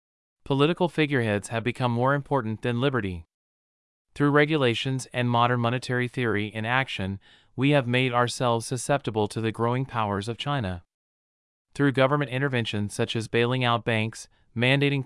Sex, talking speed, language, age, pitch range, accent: male, 145 wpm, English, 30-49, 110-130 Hz, American